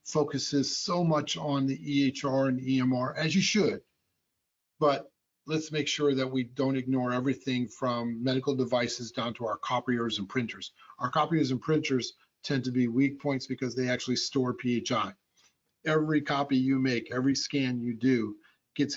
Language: English